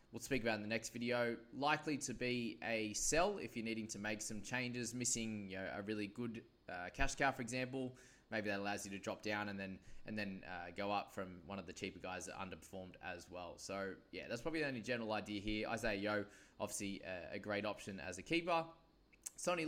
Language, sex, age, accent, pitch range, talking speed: English, male, 20-39, Australian, 100-135 Hz, 225 wpm